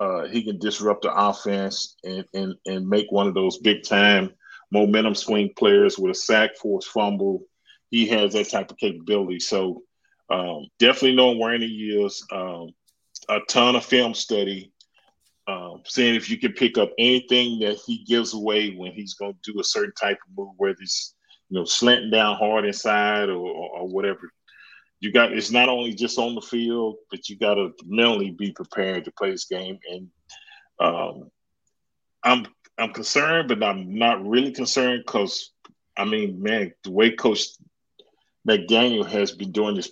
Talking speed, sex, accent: 175 wpm, male, American